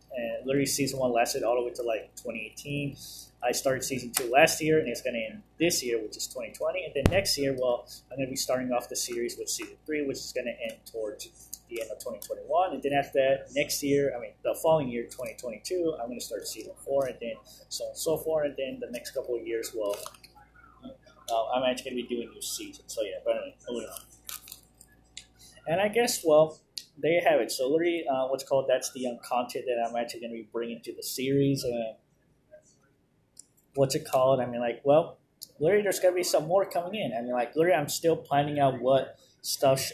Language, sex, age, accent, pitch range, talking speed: English, male, 20-39, American, 125-165 Hz, 230 wpm